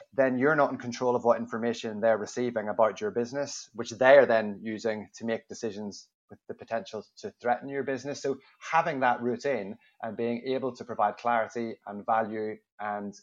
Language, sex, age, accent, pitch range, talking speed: English, male, 20-39, British, 110-125 Hz, 185 wpm